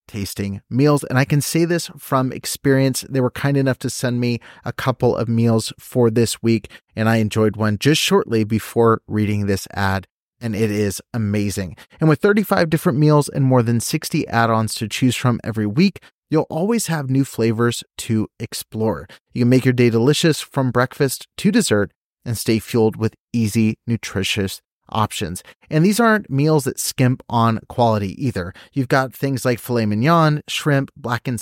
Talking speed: 180 wpm